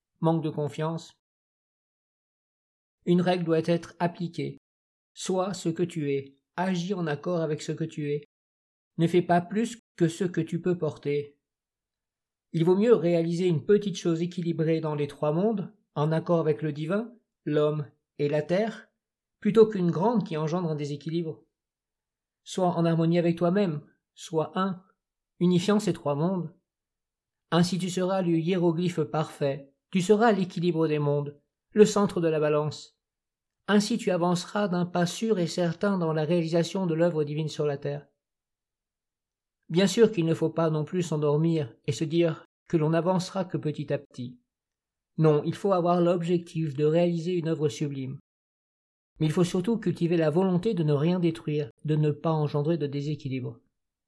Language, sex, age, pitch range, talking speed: French, male, 50-69, 150-180 Hz, 165 wpm